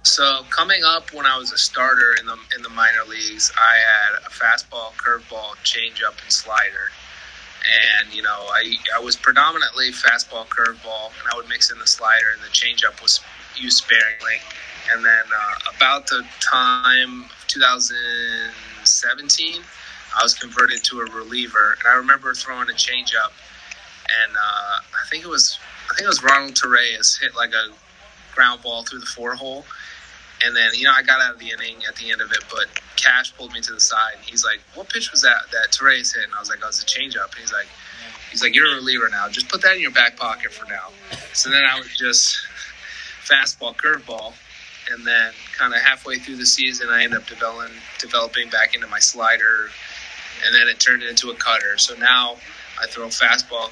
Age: 20-39